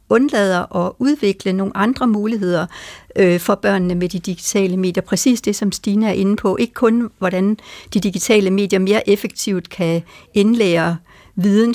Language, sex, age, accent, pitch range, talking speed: Danish, female, 60-79, native, 180-215 Hz, 160 wpm